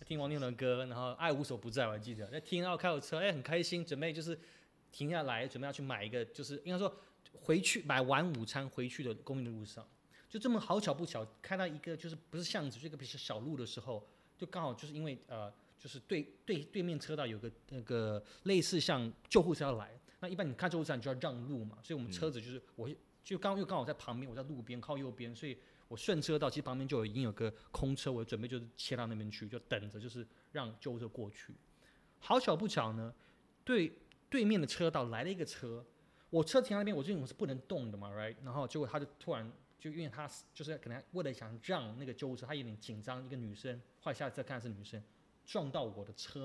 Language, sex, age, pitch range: Chinese, male, 30-49, 115-160 Hz